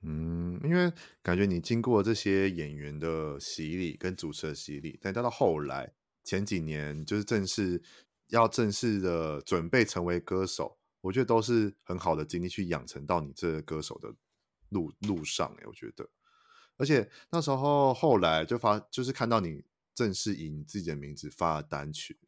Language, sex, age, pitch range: Chinese, male, 30-49, 80-110 Hz